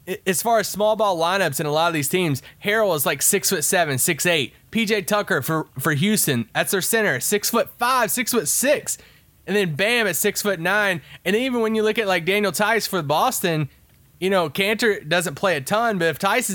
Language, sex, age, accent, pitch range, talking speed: English, male, 20-39, American, 140-200 Hz, 225 wpm